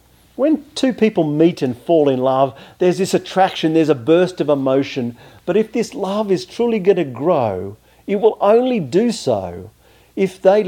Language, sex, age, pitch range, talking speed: English, male, 50-69, 110-170 Hz, 180 wpm